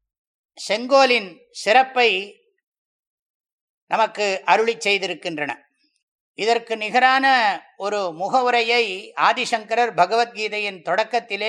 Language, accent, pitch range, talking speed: English, Indian, 205-240 Hz, 70 wpm